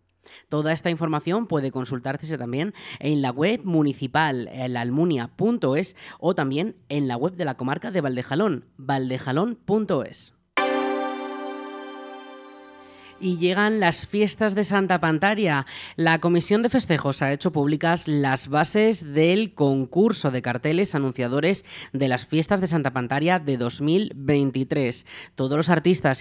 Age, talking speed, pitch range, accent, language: 20-39, 125 wpm, 135-175 Hz, Spanish, Spanish